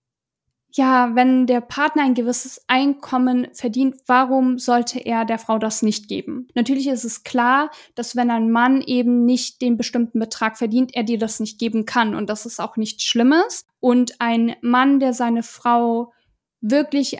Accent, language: German, German